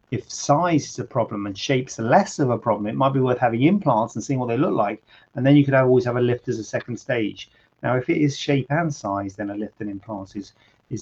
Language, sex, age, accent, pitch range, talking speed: English, male, 30-49, British, 105-130 Hz, 270 wpm